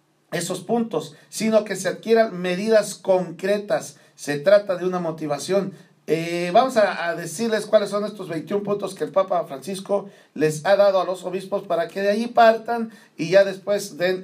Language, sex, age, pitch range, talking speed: English, male, 50-69, 165-210 Hz, 175 wpm